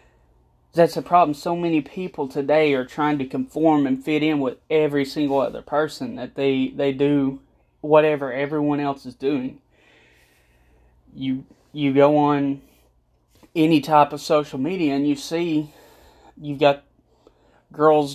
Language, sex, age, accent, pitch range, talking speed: English, male, 20-39, American, 135-160 Hz, 140 wpm